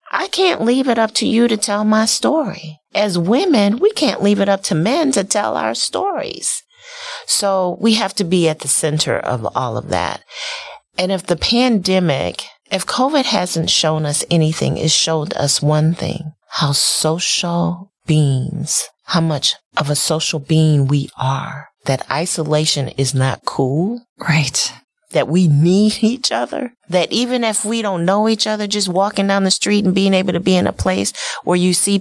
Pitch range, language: 150-210 Hz, English